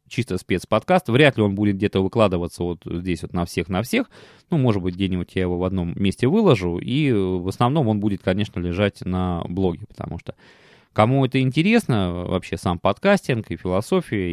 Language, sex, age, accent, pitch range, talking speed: Russian, male, 20-39, native, 95-150 Hz, 185 wpm